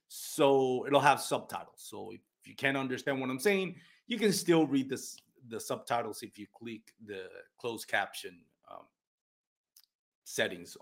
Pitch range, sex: 120-155 Hz, male